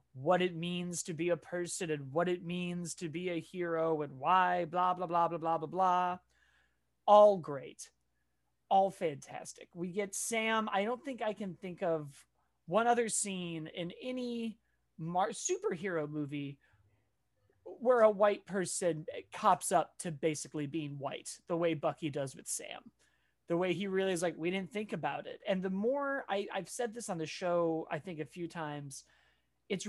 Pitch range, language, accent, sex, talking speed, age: 160-205 Hz, English, American, male, 175 wpm, 30-49